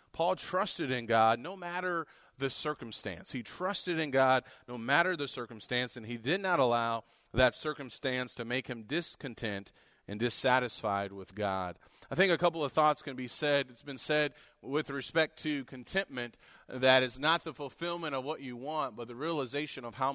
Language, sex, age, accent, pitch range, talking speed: English, male, 30-49, American, 120-150 Hz, 180 wpm